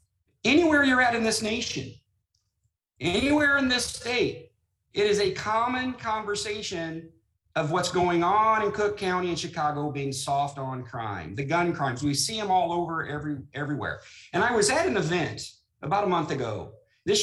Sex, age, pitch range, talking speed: male, 40-59, 130-185 Hz, 165 wpm